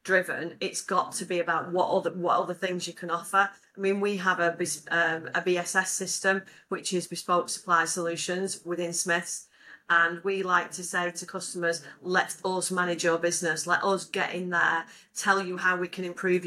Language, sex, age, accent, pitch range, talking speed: English, female, 40-59, British, 170-190 Hz, 195 wpm